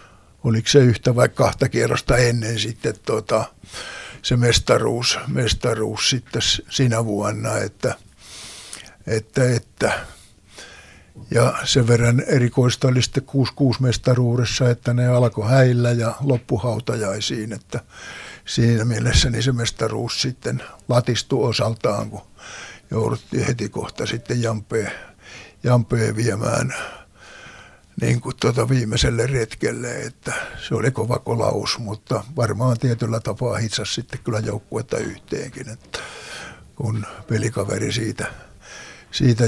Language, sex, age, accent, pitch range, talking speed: Finnish, male, 60-79, native, 110-125 Hz, 110 wpm